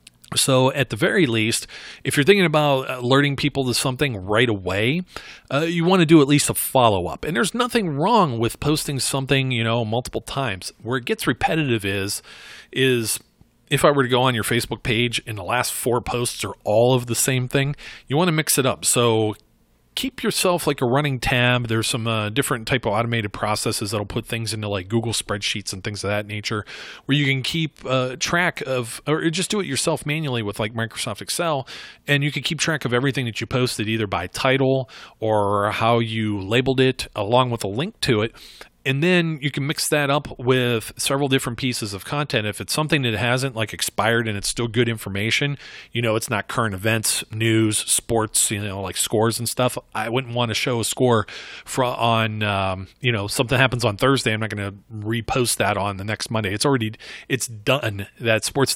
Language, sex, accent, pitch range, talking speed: English, male, American, 110-135 Hz, 210 wpm